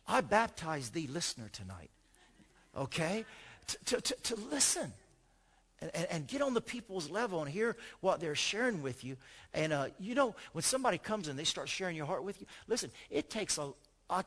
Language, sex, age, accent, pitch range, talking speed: English, male, 50-69, American, 120-165 Hz, 185 wpm